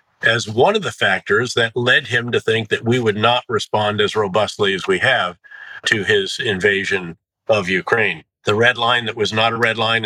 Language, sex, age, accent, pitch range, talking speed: English, male, 50-69, American, 110-150 Hz, 205 wpm